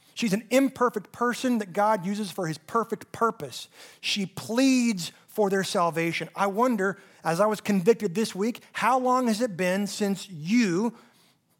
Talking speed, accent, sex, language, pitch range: 160 wpm, American, male, English, 165-230 Hz